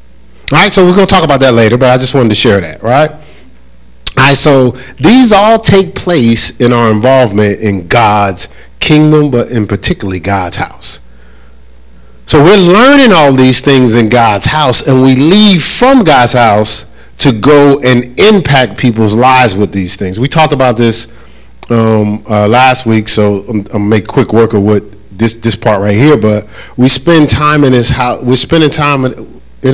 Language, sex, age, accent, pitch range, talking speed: English, male, 40-59, American, 105-145 Hz, 190 wpm